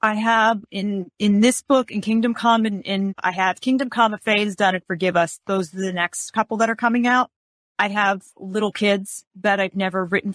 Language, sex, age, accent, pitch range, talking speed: English, female, 30-49, American, 185-220 Hz, 225 wpm